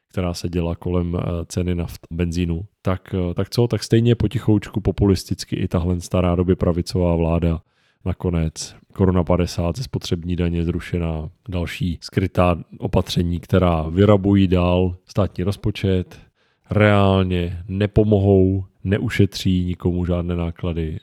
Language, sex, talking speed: Czech, male, 115 wpm